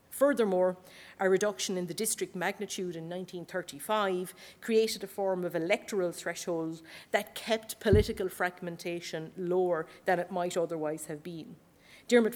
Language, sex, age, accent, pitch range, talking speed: English, female, 40-59, Irish, 170-210 Hz, 130 wpm